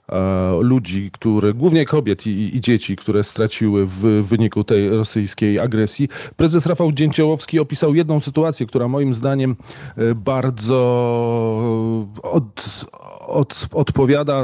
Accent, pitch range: native, 110-135 Hz